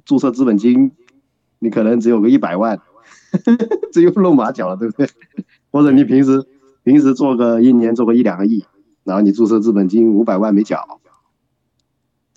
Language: Chinese